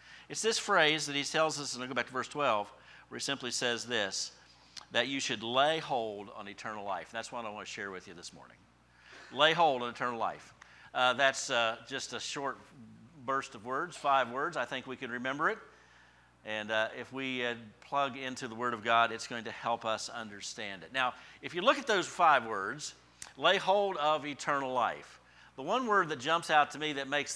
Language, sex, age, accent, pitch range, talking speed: English, male, 50-69, American, 115-150 Hz, 220 wpm